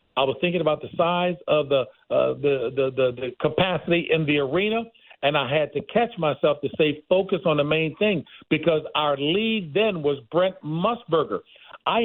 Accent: American